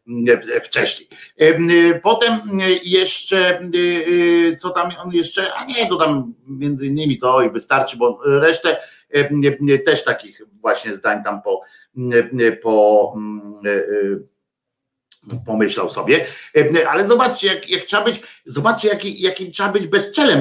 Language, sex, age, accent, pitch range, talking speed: Polish, male, 50-69, native, 130-210 Hz, 110 wpm